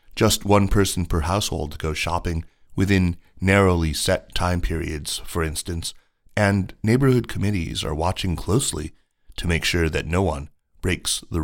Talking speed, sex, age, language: 145 wpm, male, 30-49, English